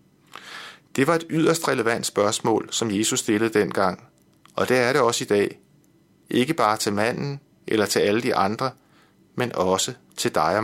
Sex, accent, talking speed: male, native, 175 wpm